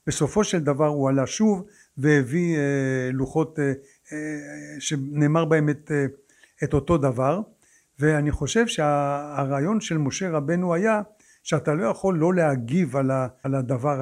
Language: Hebrew